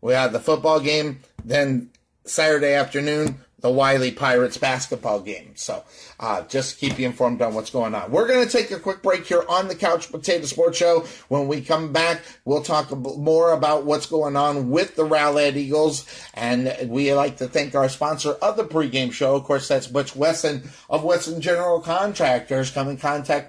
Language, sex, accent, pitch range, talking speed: English, male, American, 130-155 Hz, 195 wpm